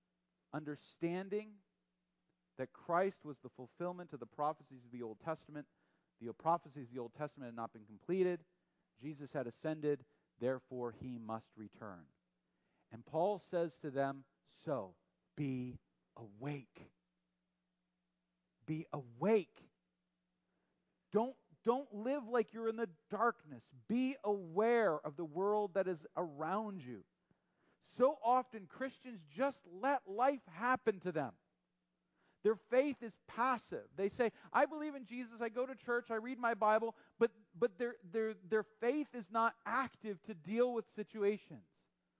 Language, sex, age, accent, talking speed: English, male, 40-59, American, 140 wpm